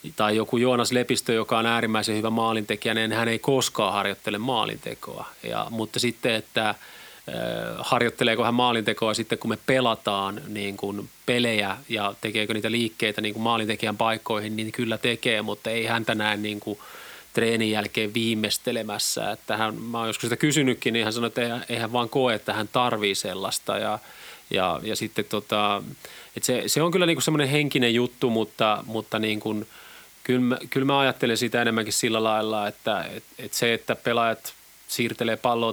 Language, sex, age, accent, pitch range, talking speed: Finnish, male, 30-49, native, 105-120 Hz, 170 wpm